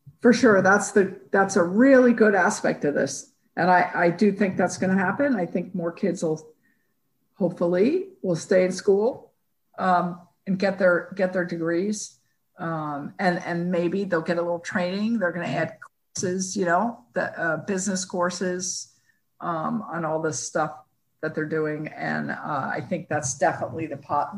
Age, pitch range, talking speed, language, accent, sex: 50-69, 165-215 Hz, 180 wpm, English, American, female